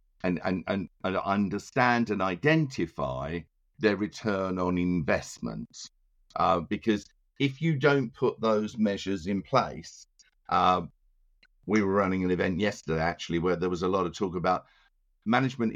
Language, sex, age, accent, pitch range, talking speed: English, male, 50-69, British, 90-115 Hz, 140 wpm